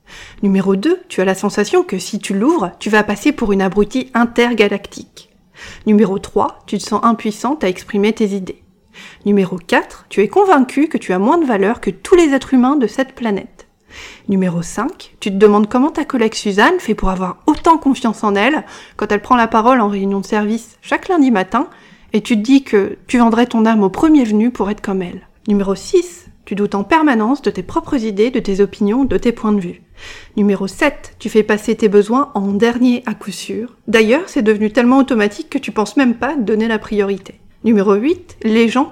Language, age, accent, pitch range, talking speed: French, 40-59, French, 200-250 Hz, 210 wpm